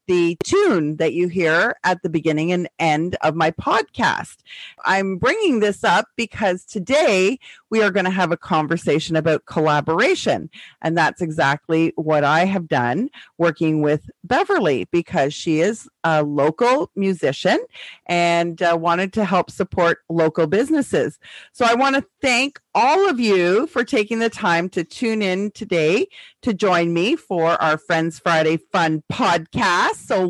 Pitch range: 170-235 Hz